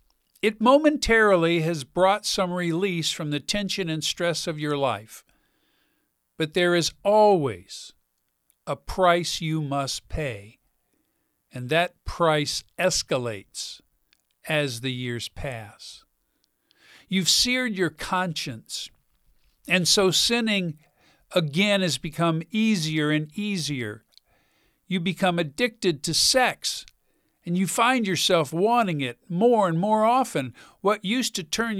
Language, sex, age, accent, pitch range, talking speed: English, male, 50-69, American, 145-190 Hz, 120 wpm